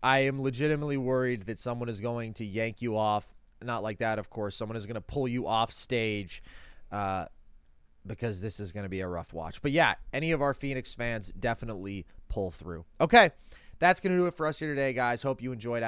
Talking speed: 225 wpm